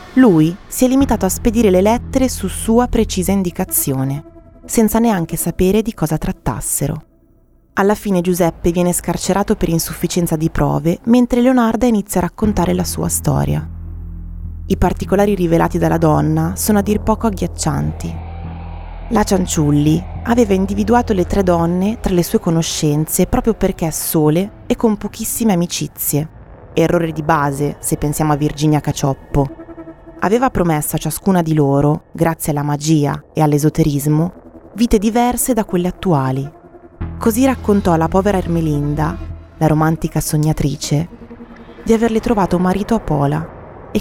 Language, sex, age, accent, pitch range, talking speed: Italian, female, 20-39, native, 150-215 Hz, 140 wpm